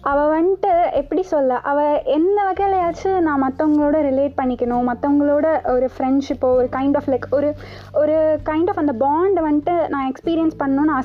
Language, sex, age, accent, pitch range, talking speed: Tamil, female, 20-39, native, 260-330 Hz, 150 wpm